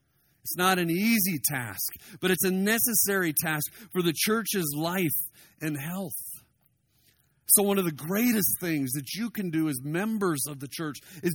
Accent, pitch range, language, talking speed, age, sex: American, 130-175 Hz, English, 170 wpm, 40-59, male